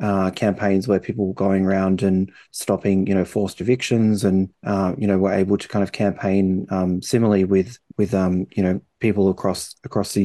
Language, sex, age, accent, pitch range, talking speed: English, male, 20-39, Australian, 95-105 Hz, 205 wpm